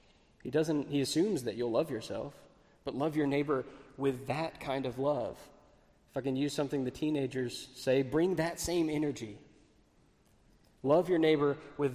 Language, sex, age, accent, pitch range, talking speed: English, male, 20-39, American, 130-150 Hz, 165 wpm